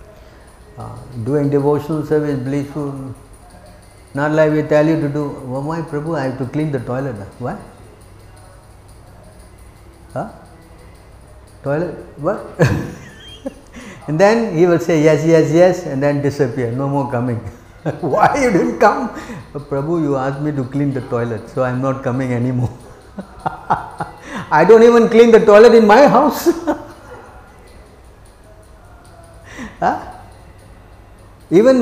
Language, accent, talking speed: English, Indian, 125 wpm